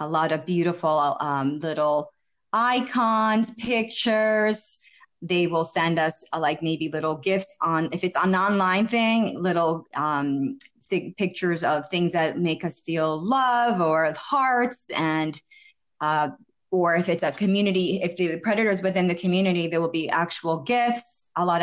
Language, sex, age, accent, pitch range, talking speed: English, female, 30-49, American, 165-200 Hz, 155 wpm